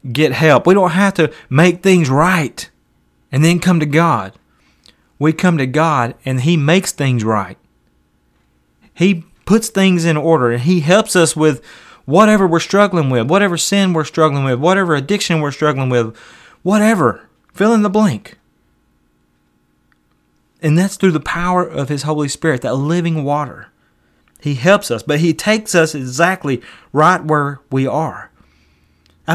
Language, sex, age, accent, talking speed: English, male, 30-49, American, 155 wpm